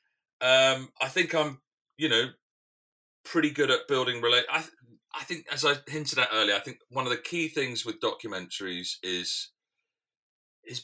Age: 30-49